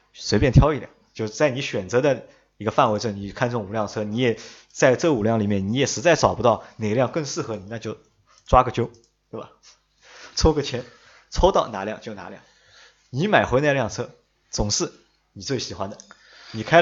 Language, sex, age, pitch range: Chinese, male, 20-39, 105-140 Hz